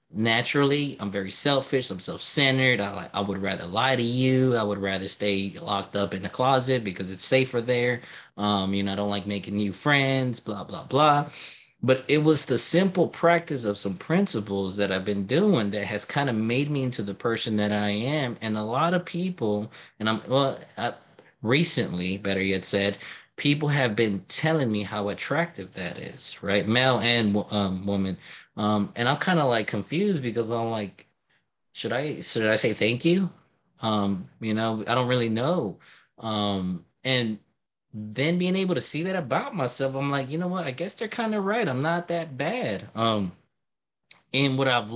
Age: 20-39